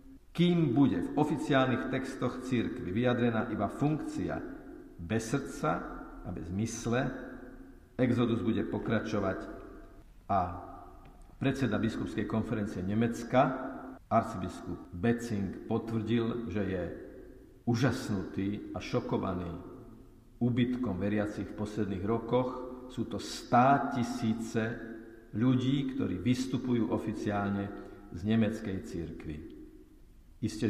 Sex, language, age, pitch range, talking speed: male, Slovak, 50-69, 100-120 Hz, 90 wpm